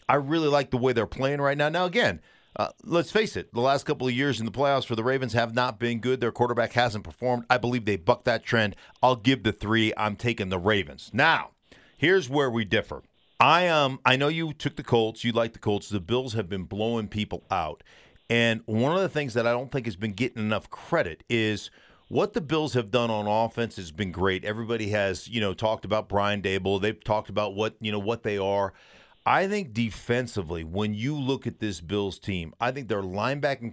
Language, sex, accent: English, male, American